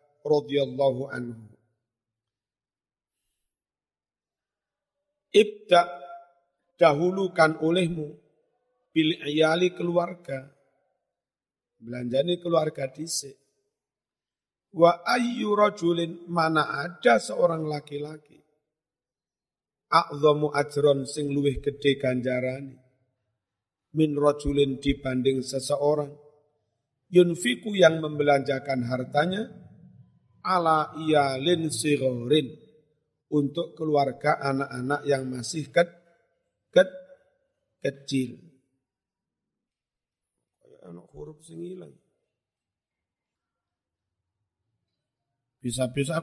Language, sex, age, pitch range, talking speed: Indonesian, male, 50-69, 130-170 Hz, 55 wpm